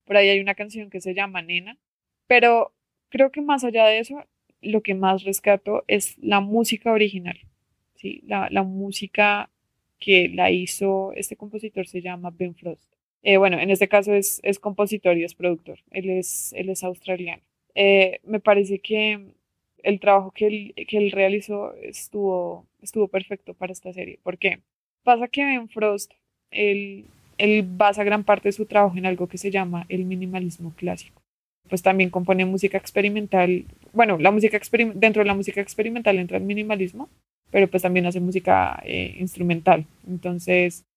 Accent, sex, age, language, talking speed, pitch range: Colombian, female, 20-39, Spanish, 170 wpm, 180-210 Hz